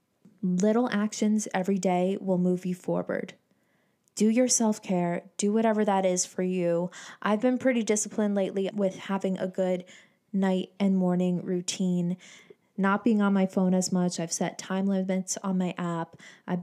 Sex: female